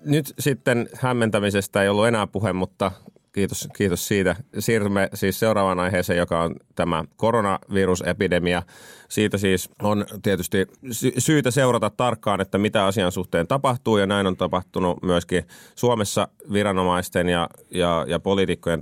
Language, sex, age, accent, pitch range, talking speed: Finnish, male, 30-49, native, 80-100 Hz, 135 wpm